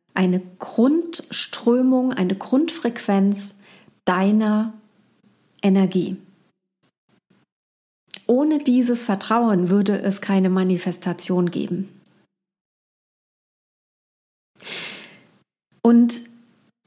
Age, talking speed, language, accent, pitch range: 30-49, 55 wpm, German, German, 185-230 Hz